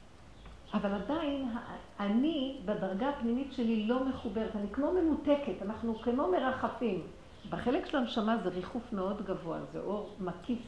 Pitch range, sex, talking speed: 225-285 Hz, female, 135 wpm